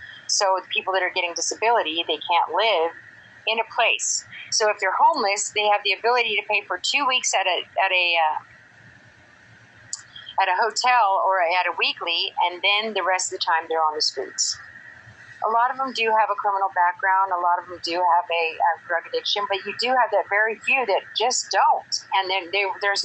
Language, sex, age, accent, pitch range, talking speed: English, female, 40-59, American, 160-205 Hz, 215 wpm